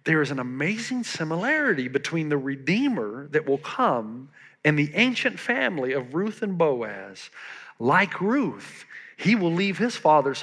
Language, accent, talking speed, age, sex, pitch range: English, American, 150 wpm, 50-69, male, 140-195 Hz